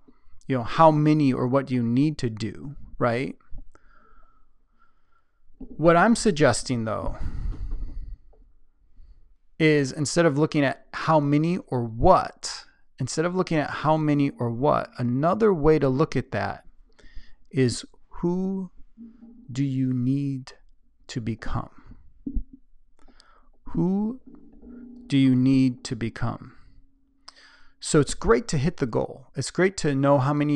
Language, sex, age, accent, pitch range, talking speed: English, male, 30-49, American, 120-165 Hz, 125 wpm